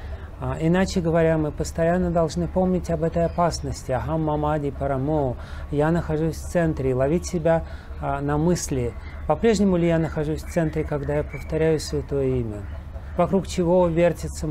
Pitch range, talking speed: 125-160 Hz, 135 wpm